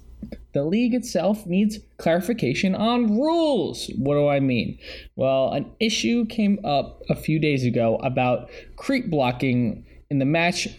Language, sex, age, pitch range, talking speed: English, male, 20-39, 125-170 Hz, 145 wpm